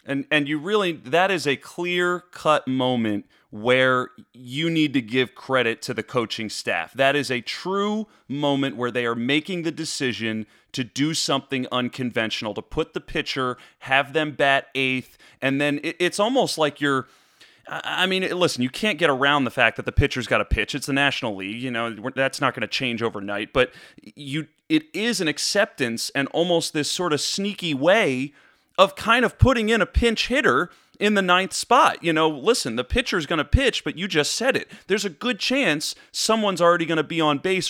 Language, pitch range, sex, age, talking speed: English, 130-175 Hz, male, 30-49, 200 wpm